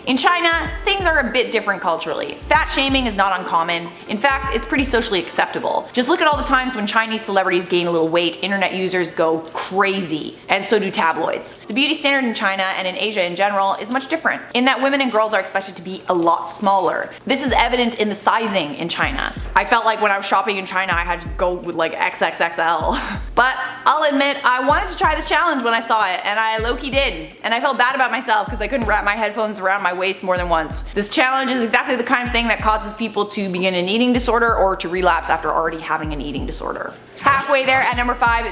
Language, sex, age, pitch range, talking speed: English, female, 20-39, 185-250 Hz, 240 wpm